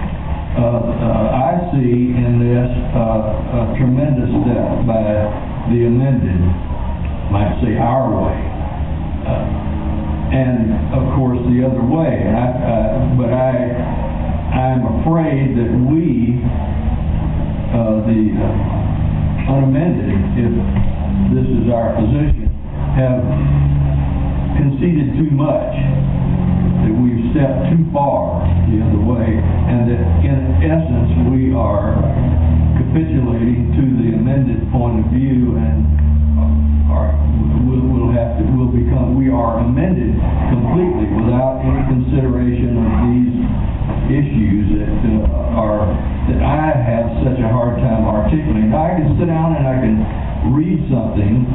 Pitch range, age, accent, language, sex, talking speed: 80-125 Hz, 60-79, American, English, male, 120 wpm